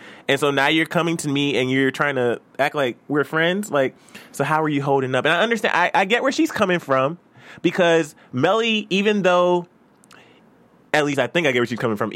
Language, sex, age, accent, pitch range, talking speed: English, male, 20-39, American, 120-165 Hz, 225 wpm